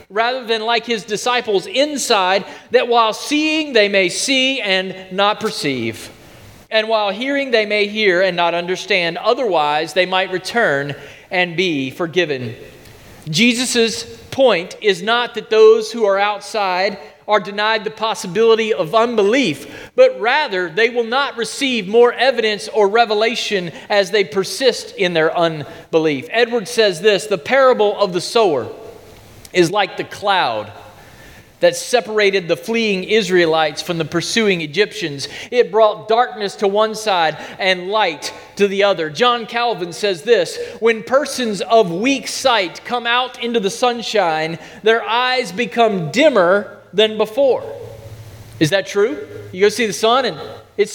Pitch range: 185-235 Hz